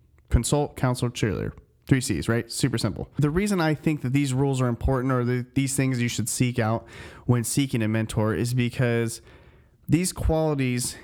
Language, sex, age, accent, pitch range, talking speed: English, male, 30-49, American, 115-135 Hz, 175 wpm